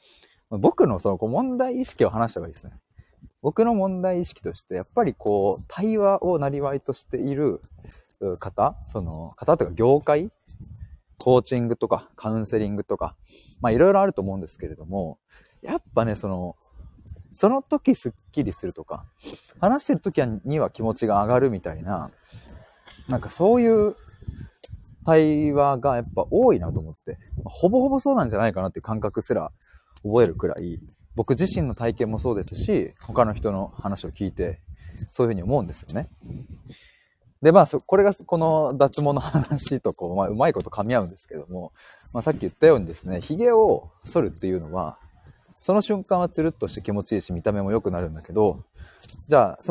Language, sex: Japanese, male